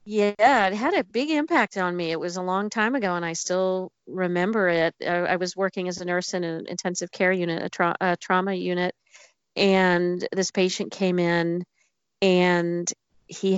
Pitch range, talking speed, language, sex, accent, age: 165-185 Hz, 190 wpm, English, female, American, 40-59